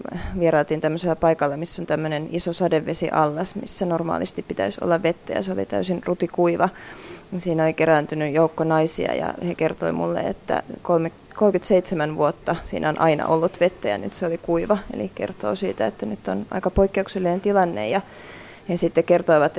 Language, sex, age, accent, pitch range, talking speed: Finnish, female, 30-49, native, 160-195 Hz, 160 wpm